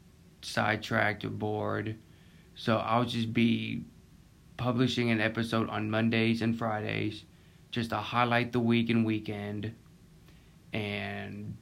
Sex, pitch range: male, 105-115 Hz